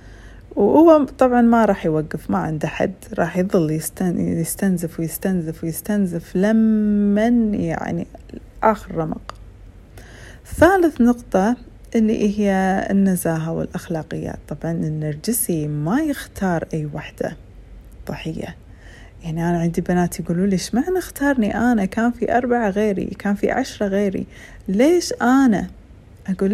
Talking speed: 115 wpm